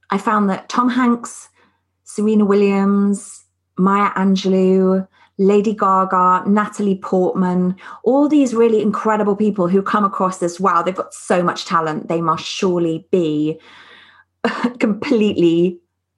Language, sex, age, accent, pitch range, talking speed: English, female, 30-49, British, 175-215 Hz, 120 wpm